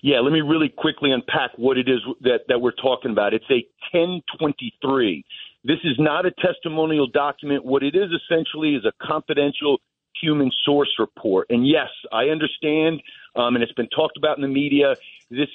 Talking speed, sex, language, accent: 180 wpm, male, English, American